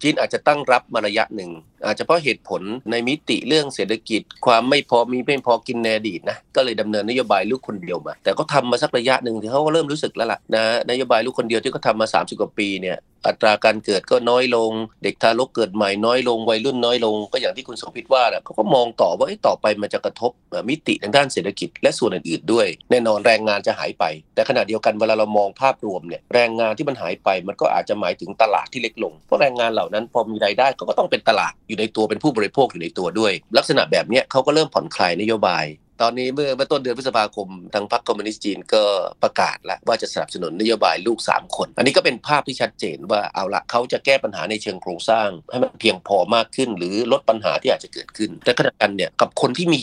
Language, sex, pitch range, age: Thai, male, 105-135 Hz, 30-49